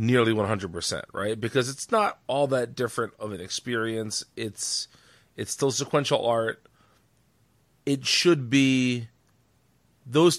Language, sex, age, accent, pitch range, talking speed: English, male, 30-49, American, 105-135 Hz, 120 wpm